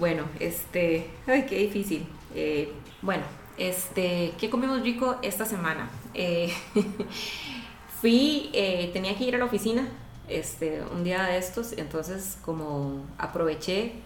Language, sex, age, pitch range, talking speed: Spanish, female, 20-39, 175-235 Hz, 130 wpm